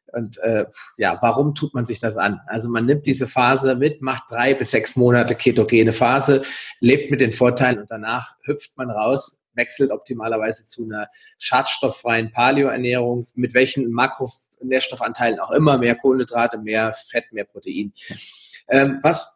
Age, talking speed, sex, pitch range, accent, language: 30-49, 155 wpm, male, 115-140 Hz, German, German